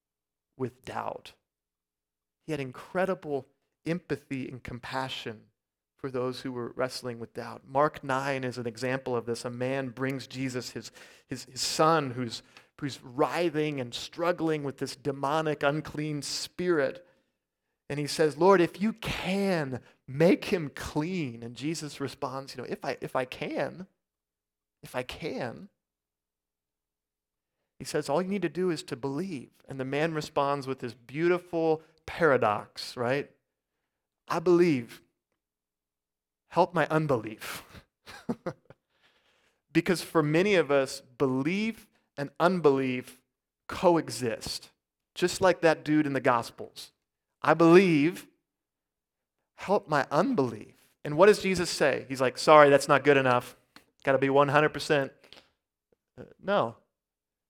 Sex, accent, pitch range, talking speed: male, American, 120-160 Hz, 130 wpm